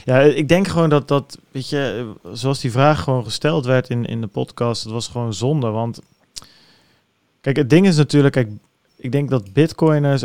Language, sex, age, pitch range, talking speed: Dutch, male, 40-59, 115-140 Hz, 185 wpm